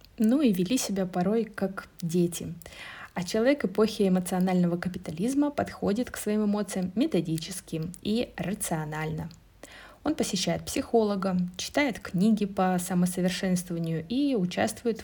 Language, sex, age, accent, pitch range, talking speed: Russian, female, 20-39, native, 175-235 Hz, 110 wpm